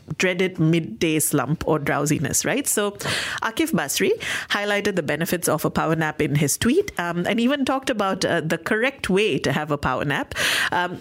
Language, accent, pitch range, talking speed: English, Indian, 155-205 Hz, 185 wpm